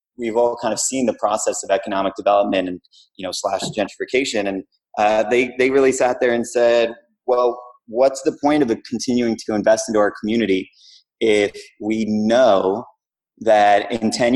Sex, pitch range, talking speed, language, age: male, 100-145 Hz, 170 wpm, English, 30-49